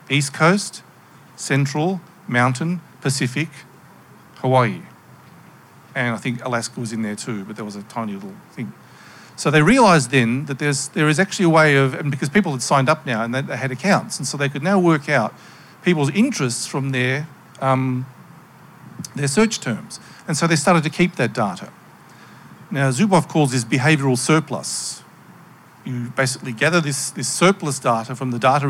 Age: 50-69